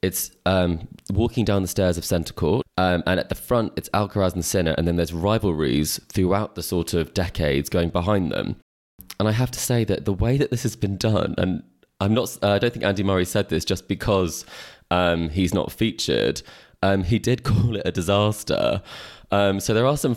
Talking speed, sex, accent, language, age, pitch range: 215 wpm, male, British, English, 20-39, 90-115 Hz